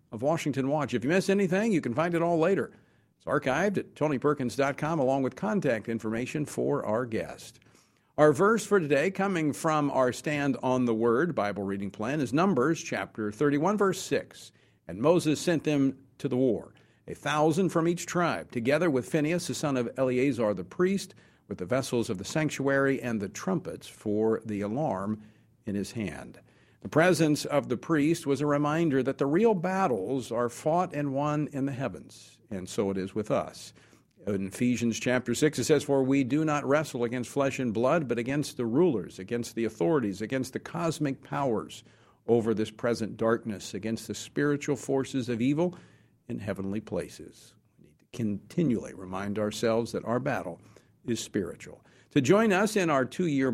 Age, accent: 50-69, American